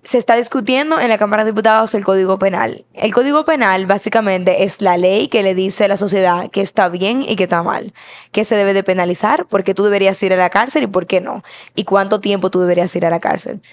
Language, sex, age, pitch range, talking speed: Spanish, female, 10-29, 190-225 Hz, 250 wpm